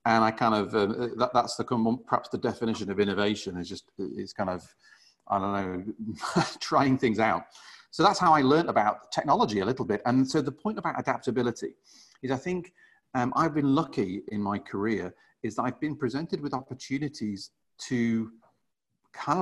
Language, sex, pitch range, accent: English, male, 115-145 Hz, British